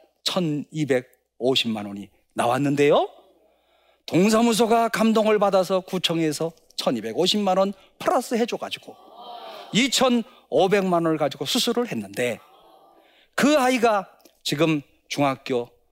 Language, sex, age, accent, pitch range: Korean, male, 40-59, native, 150-225 Hz